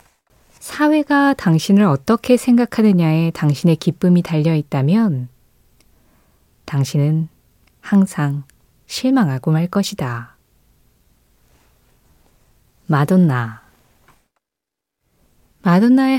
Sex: female